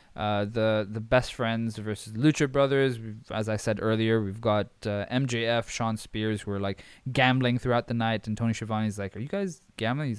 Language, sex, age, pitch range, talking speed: English, male, 20-39, 105-130 Hz, 205 wpm